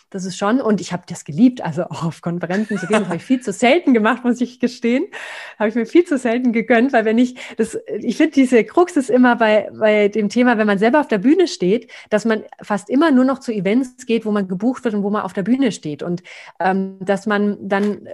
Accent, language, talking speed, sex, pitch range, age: German, German, 250 wpm, female, 185-230 Hz, 30-49